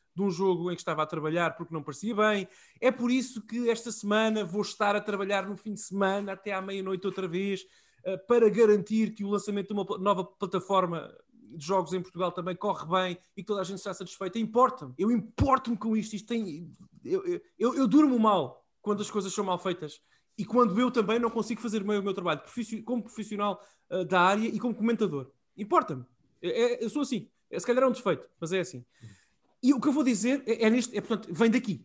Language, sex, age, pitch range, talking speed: Portuguese, male, 20-39, 185-235 Hz, 220 wpm